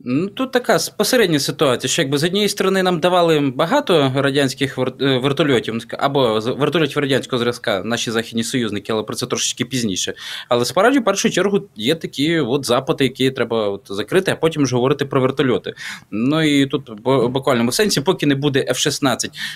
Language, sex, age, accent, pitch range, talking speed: Ukrainian, male, 20-39, native, 125-160 Hz, 180 wpm